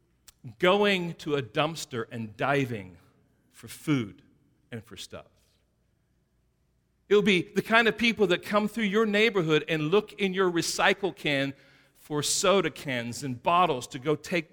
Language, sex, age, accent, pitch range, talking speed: English, male, 50-69, American, 135-205 Hz, 150 wpm